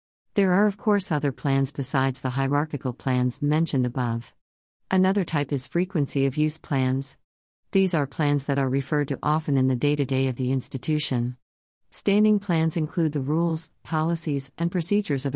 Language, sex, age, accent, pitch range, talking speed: English, female, 50-69, American, 130-160 Hz, 165 wpm